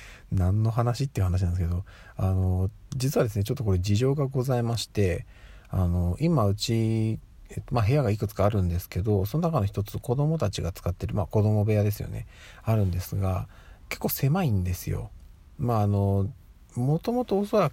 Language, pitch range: Japanese, 95-120 Hz